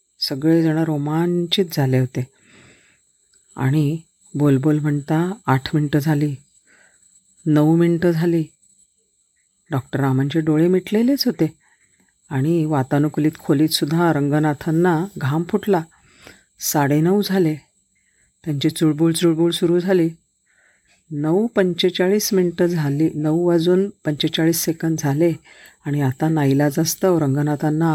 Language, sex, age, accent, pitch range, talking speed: Marathi, female, 40-59, native, 145-180 Hz, 90 wpm